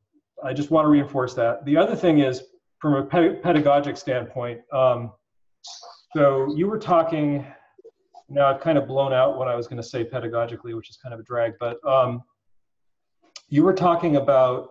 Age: 40-59